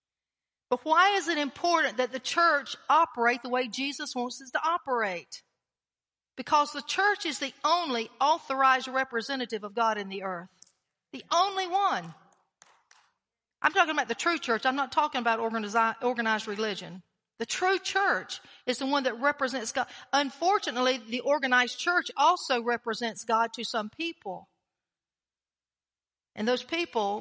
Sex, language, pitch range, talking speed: female, English, 235-320 Hz, 145 wpm